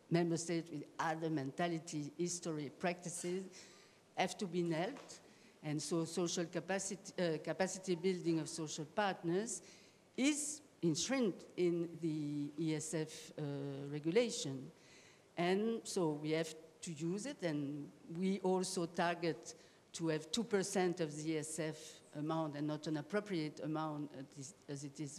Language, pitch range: English, 155-185 Hz